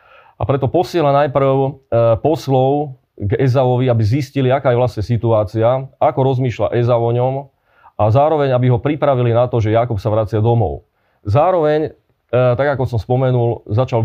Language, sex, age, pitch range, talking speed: Slovak, male, 30-49, 115-135 Hz, 155 wpm